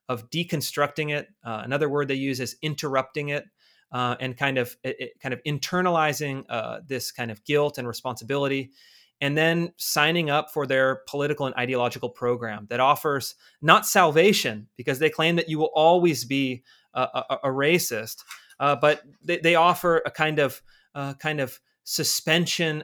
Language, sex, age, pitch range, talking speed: English, male, 30-49, 125-160 Hz, 170 wpm